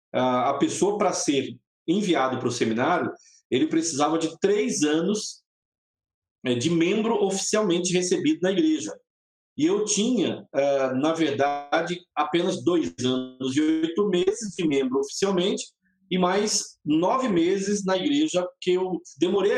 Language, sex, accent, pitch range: Portuguese, male, Brazilian, 150-210 Hz